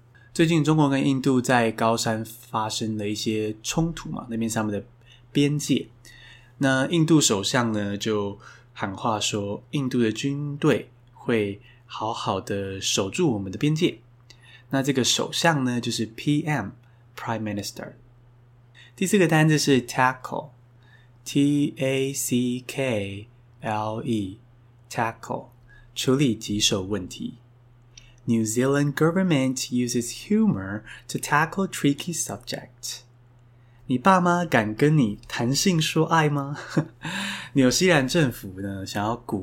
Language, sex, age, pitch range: Chinese, male, 20-39, 110-145 Hz